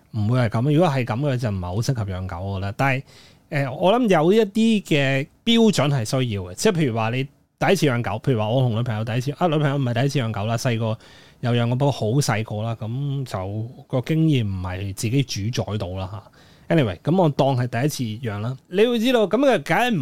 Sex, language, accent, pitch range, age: male, Chinese, native, 115-165 Hz, 20-39